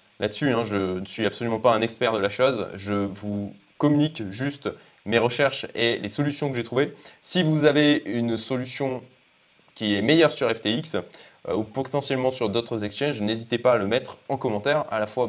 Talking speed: 190 wpm